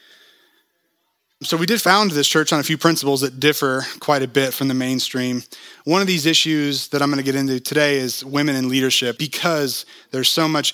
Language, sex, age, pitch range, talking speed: English, male, 20-39, 125-160 Hz, 205 wpm